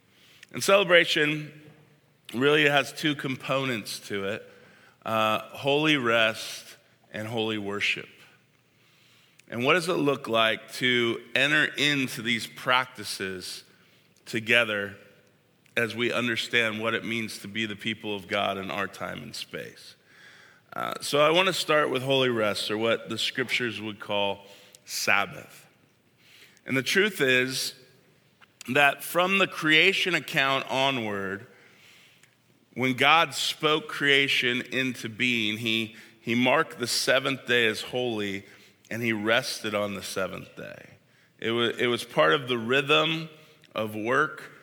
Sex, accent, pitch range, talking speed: male, American, 110-135 Hz, 135 wpm